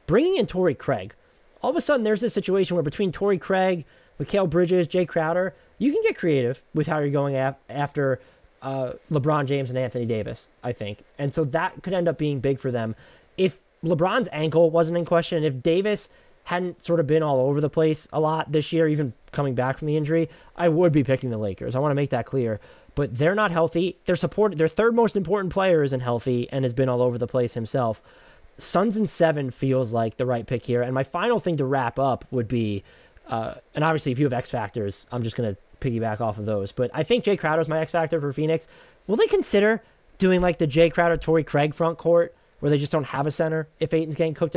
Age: 20-39